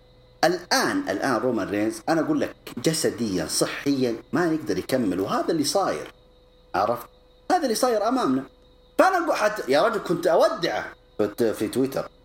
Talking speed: 140 wpm